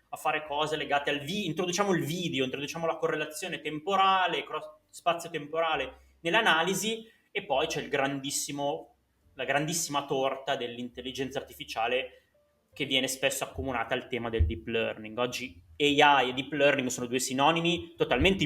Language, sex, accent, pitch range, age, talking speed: Italian, male, native, 120-155 Hz, 20-39, 145 wpm